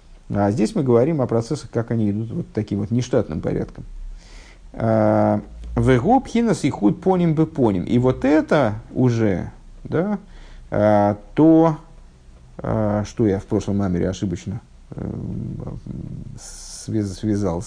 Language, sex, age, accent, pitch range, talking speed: Russian, male, 50-69, native, 105-155 Hz, 110 wpm